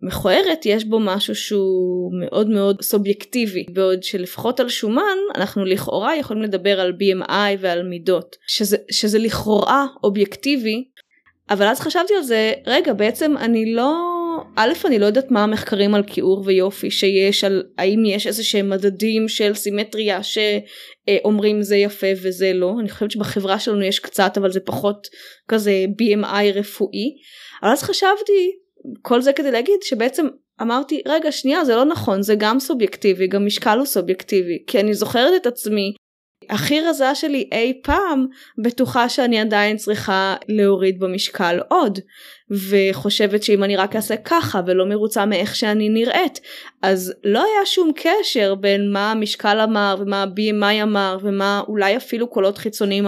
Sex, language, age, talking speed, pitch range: female, Hebrew, 10-29, 150 wpm, 195-240 Hz